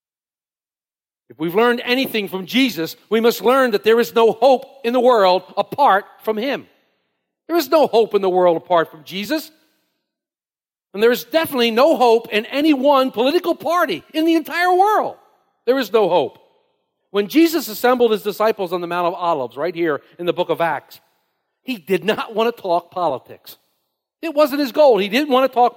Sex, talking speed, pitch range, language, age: male, 190 wpm, 200-300 Hz, English, 50-69